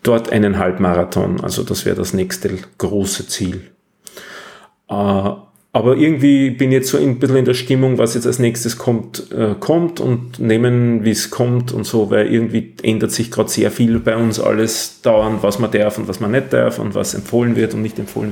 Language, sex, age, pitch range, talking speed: German, male, 40-59, 110-135 Hz, 205 wpm